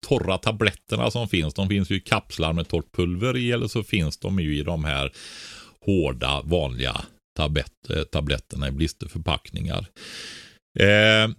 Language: Swedish